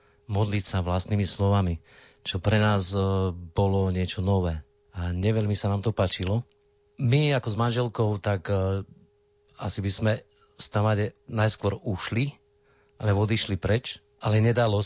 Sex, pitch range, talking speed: male, 95-110 Hz, 135 wpm